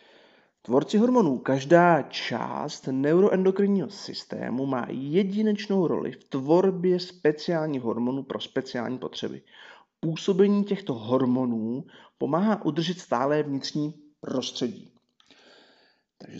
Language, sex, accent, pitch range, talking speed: Czech, male, native, 125-175 Hz, 90 wpm